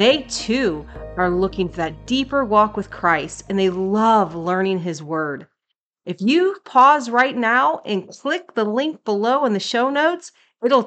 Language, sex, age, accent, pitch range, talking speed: English, female, 30-49, American, 180-255 Hz, 170 wpm